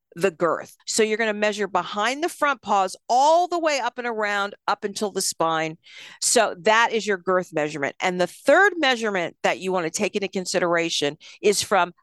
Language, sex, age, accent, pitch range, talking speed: English, female, 50-69, American, 185-235 Hz, 200 wpm